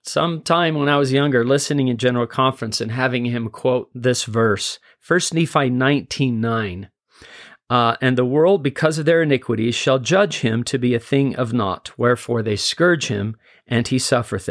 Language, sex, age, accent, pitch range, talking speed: English, male, 40-59, American, 115-140 Hz, 180 wpm